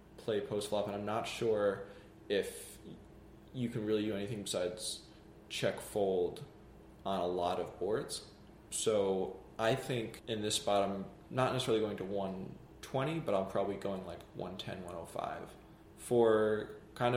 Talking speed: 145 wpm